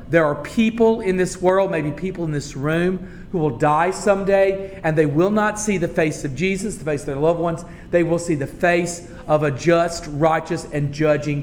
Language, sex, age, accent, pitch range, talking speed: English, male, 40-59, American, 160-200 Hz, 215 wpm